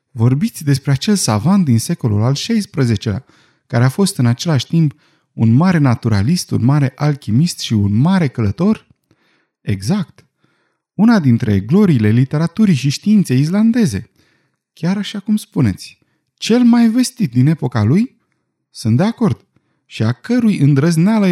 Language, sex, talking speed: Romanian, male, 140 wpm